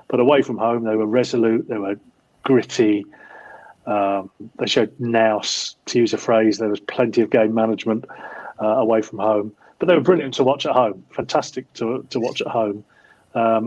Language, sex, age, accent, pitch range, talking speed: English, male, 40-59, British, 110-130 Hz, 190 wpm